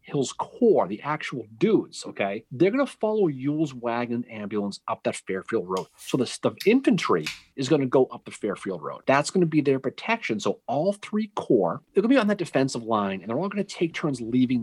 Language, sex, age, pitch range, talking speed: English, male, 40-59, 105-160 Hz, 225 wpm